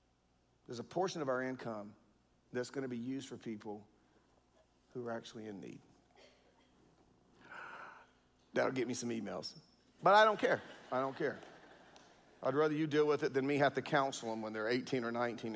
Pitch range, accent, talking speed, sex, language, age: 120-175 Hz, American, 180 wpm, male, English, 40-59